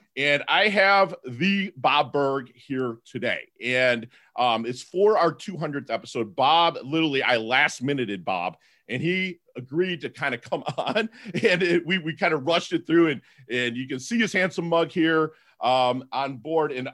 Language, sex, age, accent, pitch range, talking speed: English, male, 40-59, American, 130-185 Hz, 175 wpm